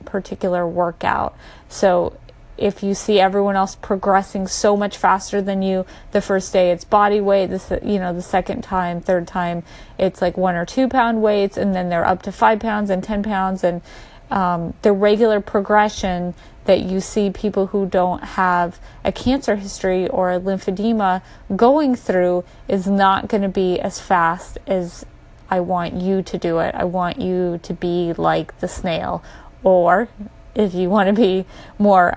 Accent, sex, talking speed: American, female, 170 wpm